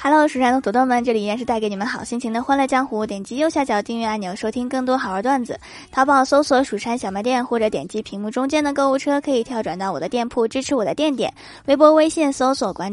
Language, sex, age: Chinese, female, 20-39